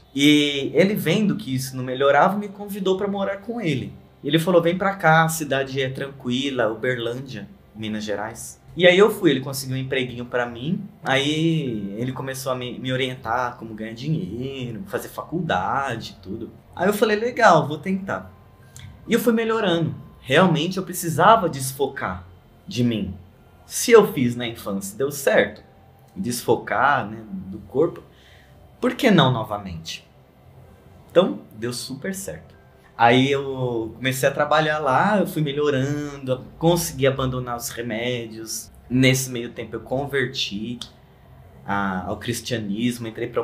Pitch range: 115-160 Hz